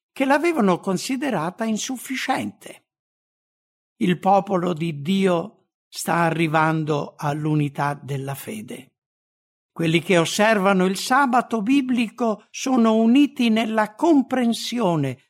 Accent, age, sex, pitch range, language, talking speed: Italian, 60-79, male, 150-230 Hz, English, 90 wpm